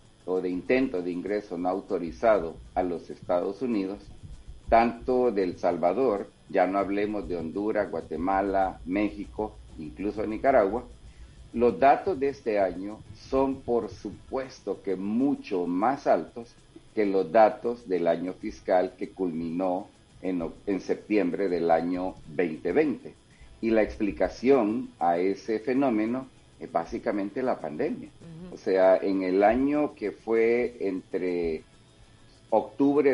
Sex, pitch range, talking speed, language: male, 90-120 Hz, 125 wpm, Spanish